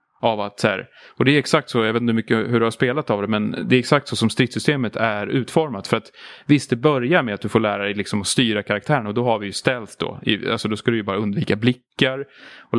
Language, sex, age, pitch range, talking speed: Swedish, male, 30-49, 110-130 Hz, 275 wpm